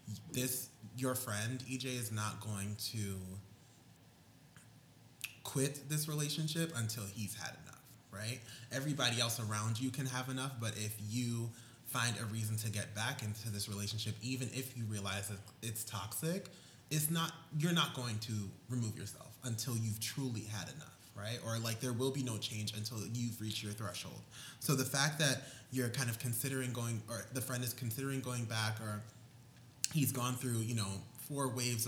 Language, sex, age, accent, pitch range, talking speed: English, male, 20-39, American, 110-135 Hz, 175 wpm